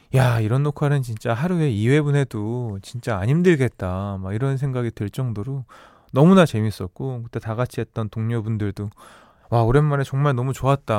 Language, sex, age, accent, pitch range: Korean, male, 20-39, native, 115-160 Hz